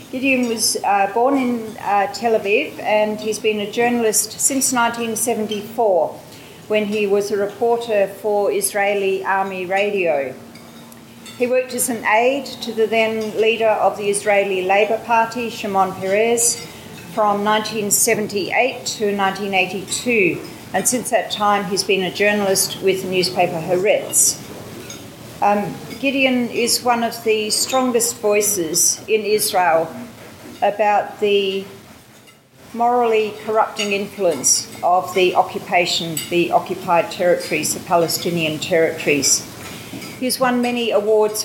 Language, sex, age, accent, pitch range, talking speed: English, female, 40-59, Australian, 195-230 Hz, 120 wpm